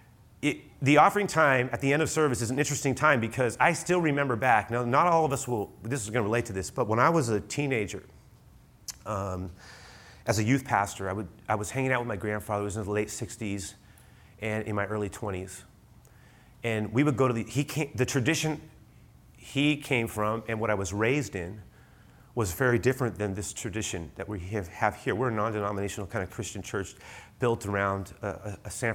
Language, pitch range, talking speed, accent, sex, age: English, 100-125 Hz, 205 wpm, American, male, 30-49